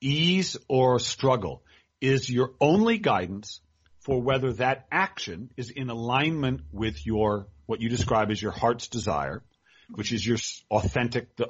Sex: male